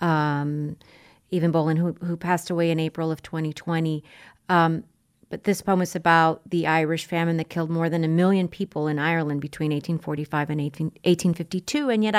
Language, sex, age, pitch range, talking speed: English, female, 40-59, 160-190 Hz, 175 wpm